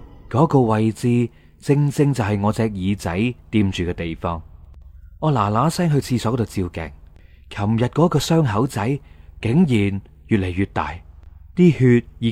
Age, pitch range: 30-49, 90-130 Hz